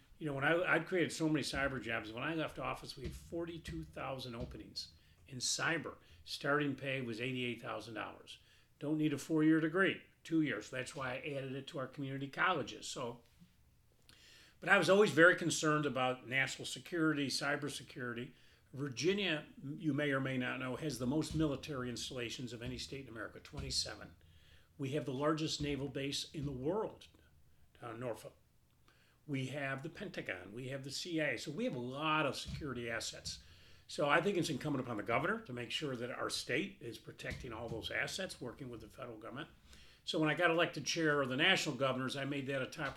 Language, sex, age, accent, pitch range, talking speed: English, male, 40-59, American, 125-155 Hz, 195 wpm